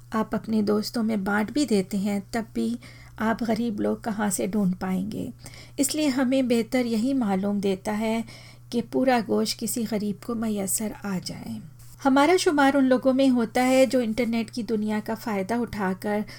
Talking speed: 170 wpm